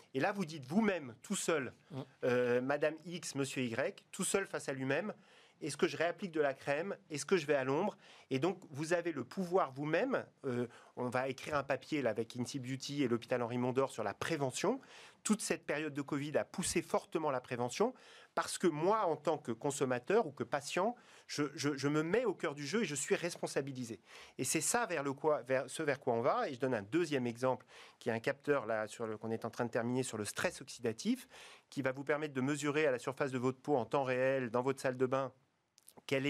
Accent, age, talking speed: French, 40-59, 235 wpm